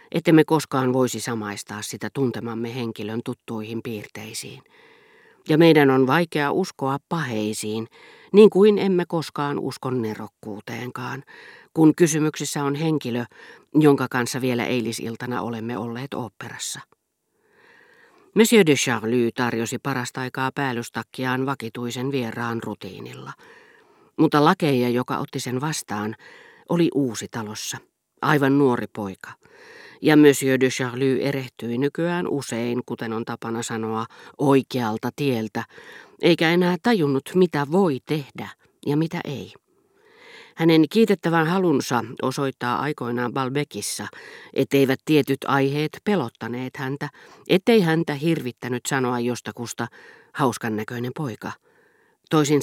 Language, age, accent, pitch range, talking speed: Finnish, 40-59, native, 120-160 Hz, 110 wpm